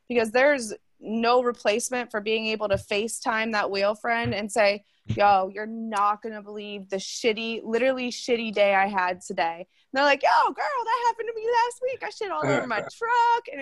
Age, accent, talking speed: 20-39, American, 205 wpm